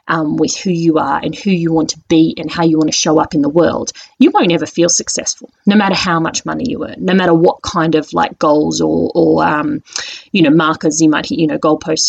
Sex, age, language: female, 30-49, English